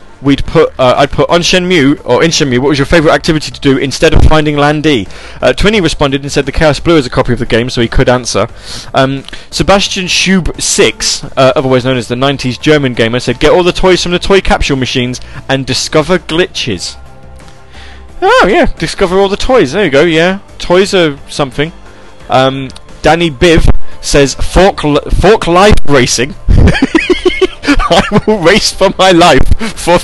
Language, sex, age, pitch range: English, male, 20-39, 110-155 Hz